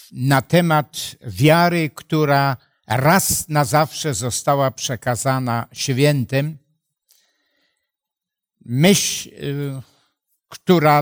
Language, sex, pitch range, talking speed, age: Polish, male, 130-170 Hz, 65 wpm, 60-79